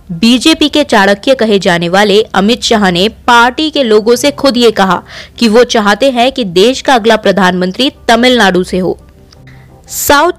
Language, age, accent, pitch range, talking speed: Hindi, 20-39, native, 200-265 Hz, 165 wpm